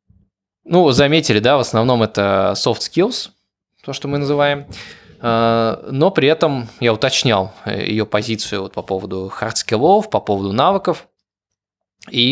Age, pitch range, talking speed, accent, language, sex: 20-39, 105-130 Hz, 130 wpm, native, Russian, male